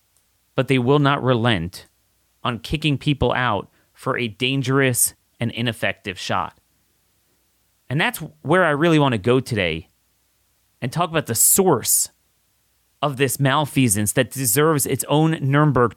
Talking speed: 140 wpm